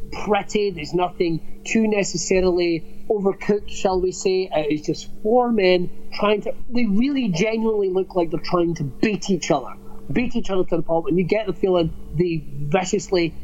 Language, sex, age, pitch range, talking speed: English, male, 30-49, 160-195 Hz, 180 wpm